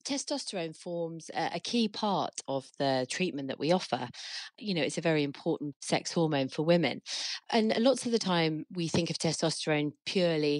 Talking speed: 175 wpm